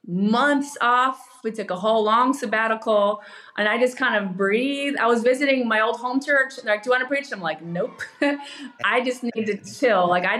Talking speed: 225 wpm